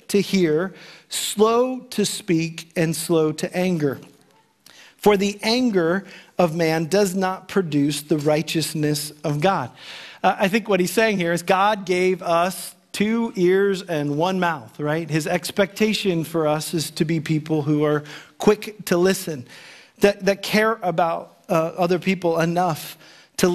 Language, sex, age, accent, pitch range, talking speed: English, male, 40-59, American, 155-185 Hz, 155 wpm